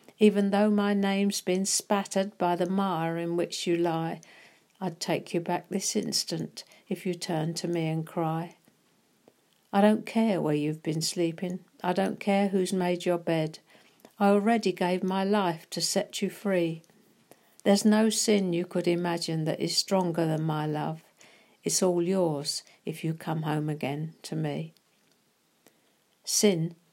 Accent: British